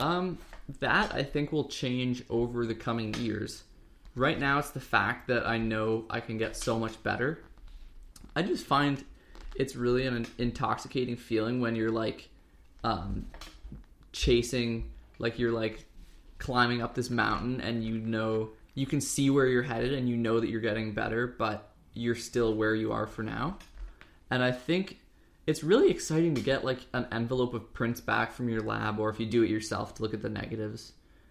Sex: male